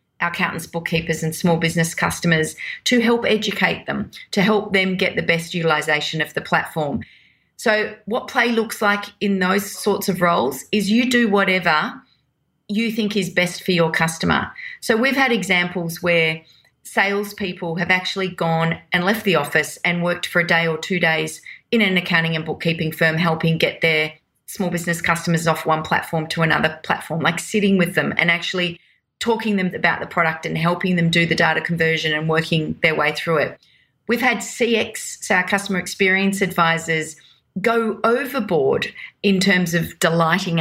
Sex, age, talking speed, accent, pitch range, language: female, 30-49, 175 wpm, Australian, 165-200 Hz, English